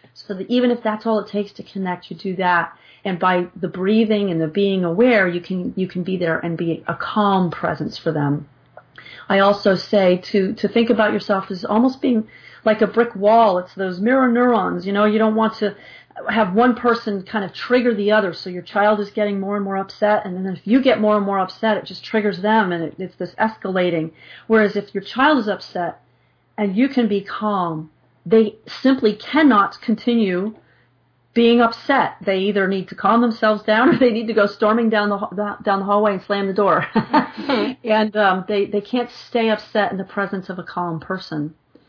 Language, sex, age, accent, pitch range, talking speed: English, female, 40-59, American, 185-220 Hz, 210 wpm